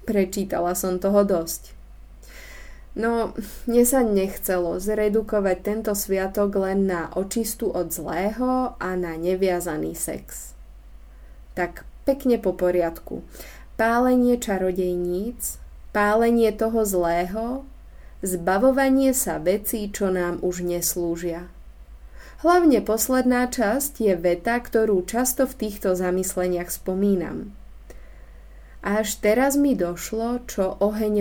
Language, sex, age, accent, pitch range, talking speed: Czech, female, 20-39, native, 175-220 Hz, 100 wpm